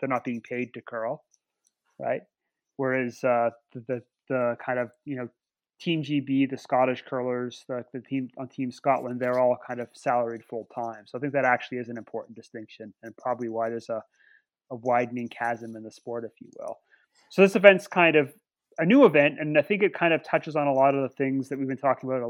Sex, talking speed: male, 225 wpm